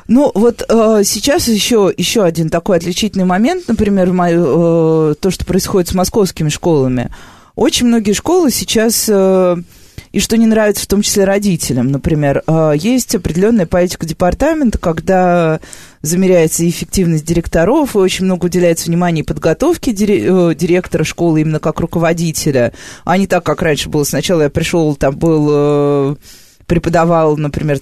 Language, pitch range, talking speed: Russian, 165-215 Hz, 145 wpm